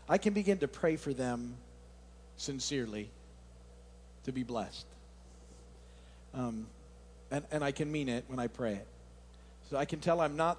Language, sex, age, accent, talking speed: English, male, 50-69, American, 160 wpm